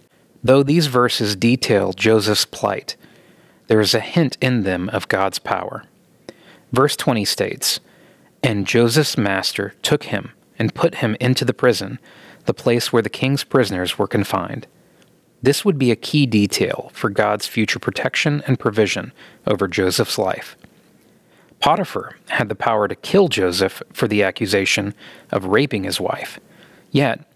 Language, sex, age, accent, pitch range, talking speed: English, male, 30-49, American, 105-140 Hz, 145 wpm